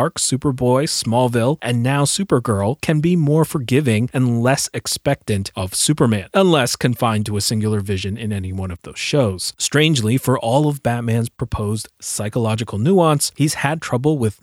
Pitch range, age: 110-140 Hz, 30-49